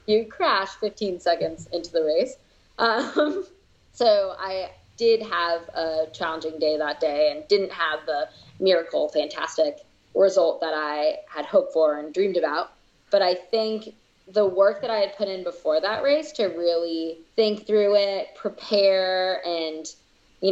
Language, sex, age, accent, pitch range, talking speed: English, female, 20-39, American, 170-230 Hz, 155 wpm